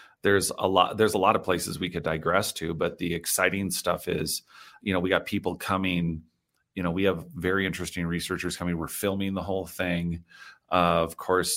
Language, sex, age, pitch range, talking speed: English, male, 30-49, 85-95 Hz, 200 wpm